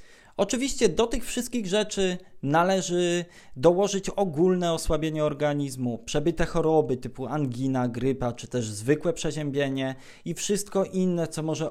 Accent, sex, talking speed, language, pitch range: native, male, 125 wpm, Polish, 135-190 Hz